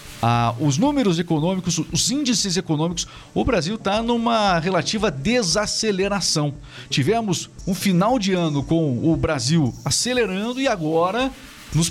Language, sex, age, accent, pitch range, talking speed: Portuguese, male, 50-69, Brazilian, 150-200 Hz, 125 wpm